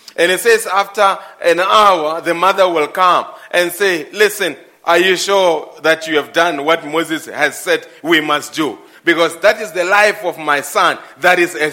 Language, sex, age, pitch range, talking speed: English, male, 30-49, 170-215 Hz, 195 wpm